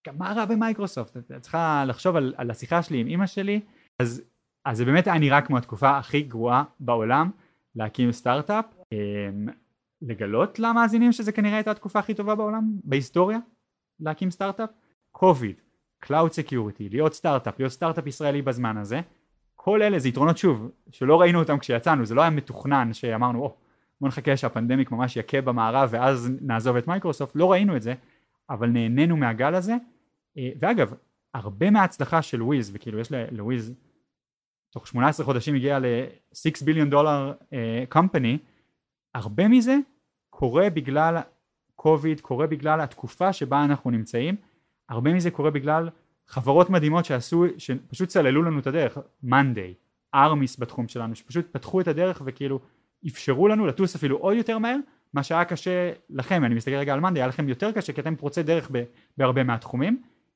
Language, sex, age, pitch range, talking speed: Hebrew, male, 20-39, 125-175 Hz, 140 wpm